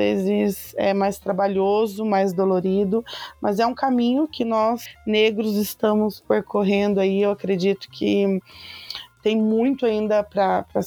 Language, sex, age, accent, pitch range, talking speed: Portuguese, female, 20-39, Brazilian, 195-220 Hz, 125 wpm